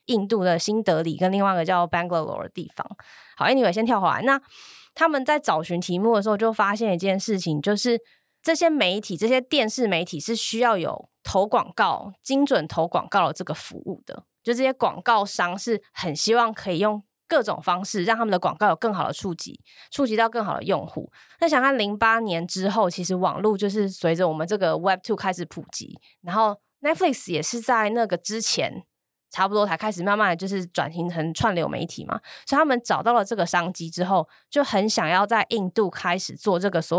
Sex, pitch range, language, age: female, 185-235 Hz, Chinese, 20-39